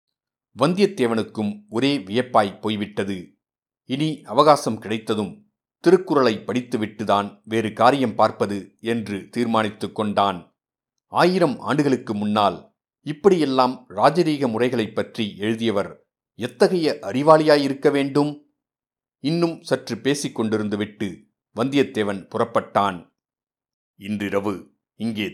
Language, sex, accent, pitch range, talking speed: Tamil, male, native, 105-135 Hz, 80 wpm